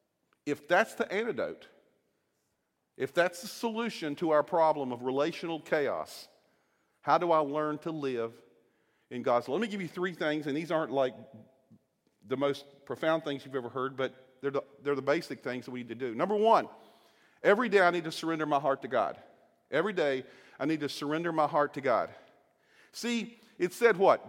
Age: 40-59